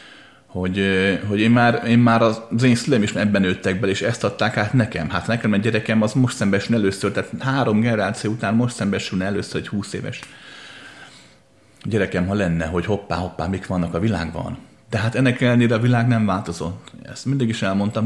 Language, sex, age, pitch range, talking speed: Hungarian, male, 30-49, 95-120 Hz, 195 wpm